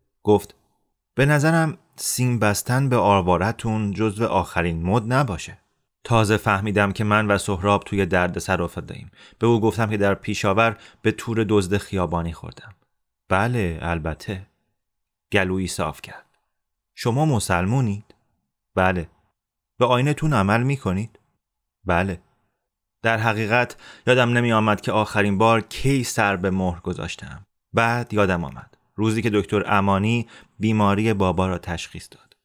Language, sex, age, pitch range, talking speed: Persian, male, 30-49, 95-115 Hz, 130 wpm